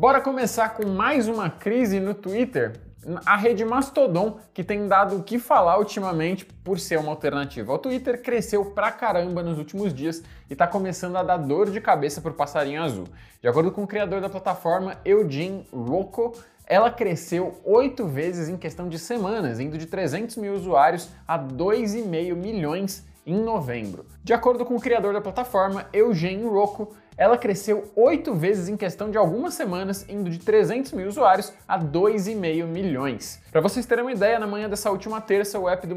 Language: Portuguese